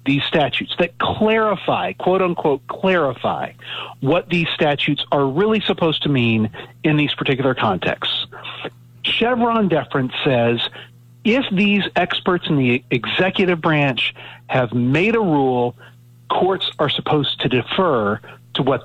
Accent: American